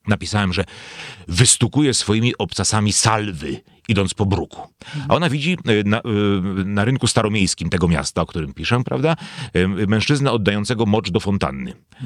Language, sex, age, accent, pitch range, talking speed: Polish, male, 40-59, native, 95-130 Hz, 135 wpm